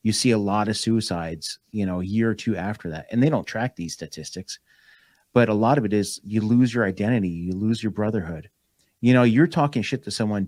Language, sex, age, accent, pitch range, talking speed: English, male, 30-49, American, 100-120 Hz, 235 wpm